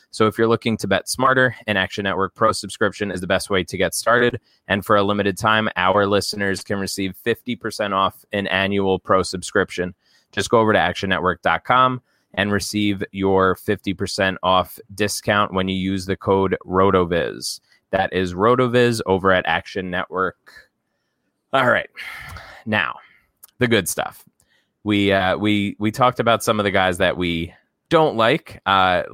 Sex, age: male, 20-39